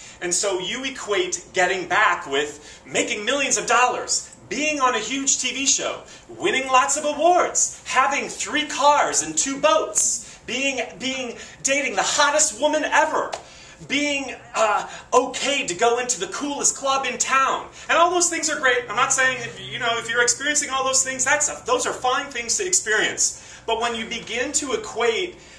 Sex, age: male, 30-49